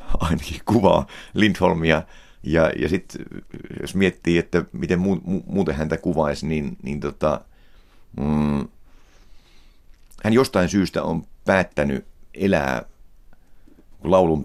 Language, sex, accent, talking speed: Finnish, male, native, 110 wpm